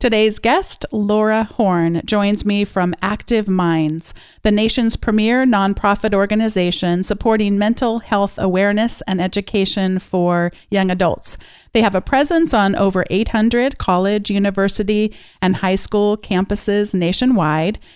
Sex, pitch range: female, 185-225 Hz